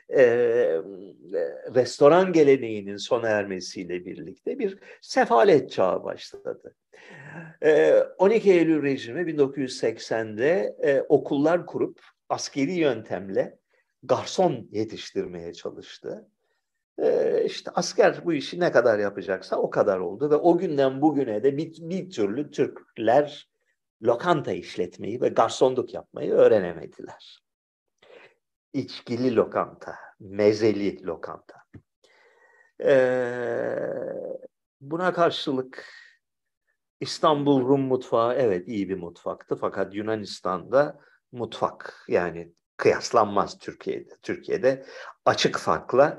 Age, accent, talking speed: 50-69, native, 95 wpm